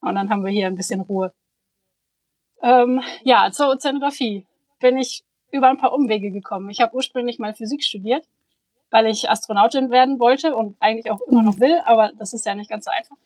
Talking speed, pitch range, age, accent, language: 200 wpm, 205-250 Hz, 20-39, German, German